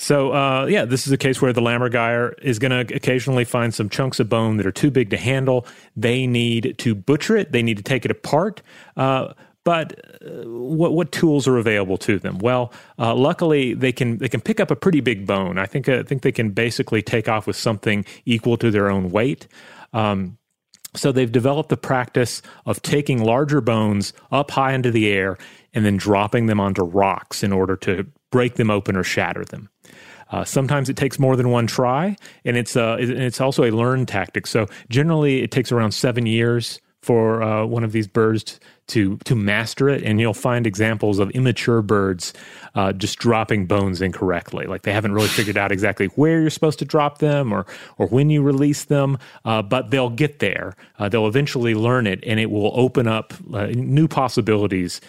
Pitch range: 105-135 Hz